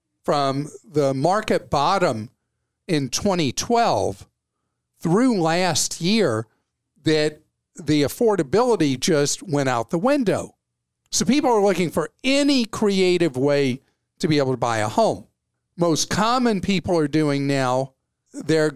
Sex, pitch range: male, 135-175 Hz